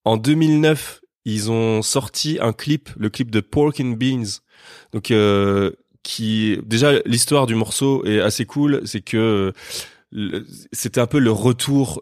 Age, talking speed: 20-39, 155 wpm